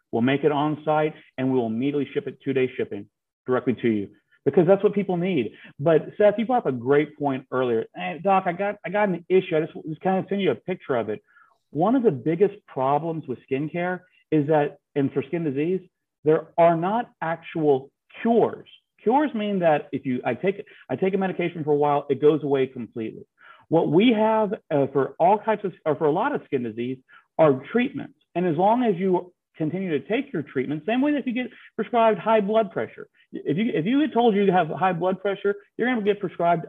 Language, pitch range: English, 145-200 Hz